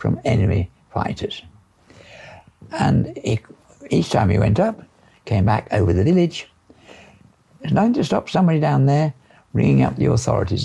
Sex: male